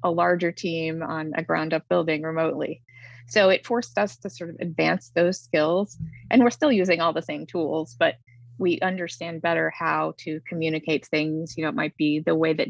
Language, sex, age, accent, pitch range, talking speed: English, female, 20-39, American, 130-185 Hz, 200 wpm